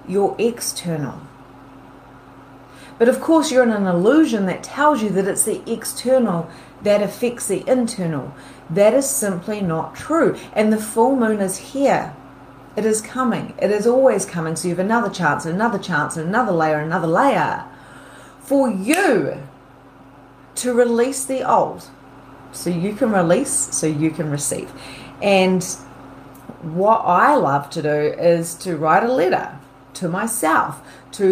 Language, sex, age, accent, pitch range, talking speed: English, female, 30-49, Australian, 160-215 Hz, 150 wpm